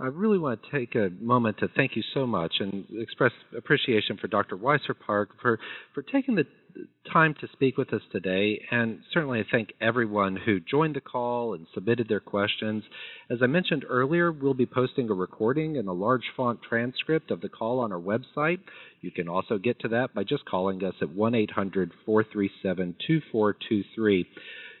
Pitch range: 100-140 Hz